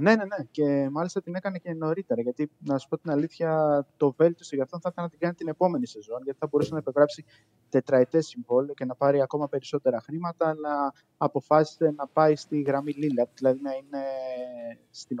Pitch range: 125-150 Hz